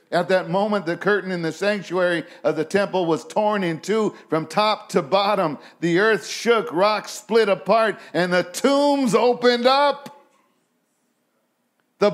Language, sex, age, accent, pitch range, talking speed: English, male, 50-69, American, 160-245 Hz, 155 wpm